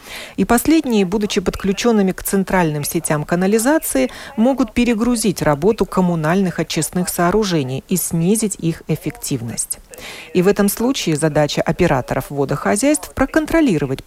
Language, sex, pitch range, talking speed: Russian, female, 150-215 Hz, 110 wpm